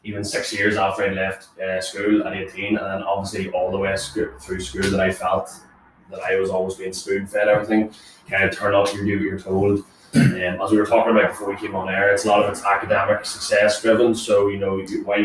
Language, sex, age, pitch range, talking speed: English, male, 20-39, 95-110 Hz, 245 wpm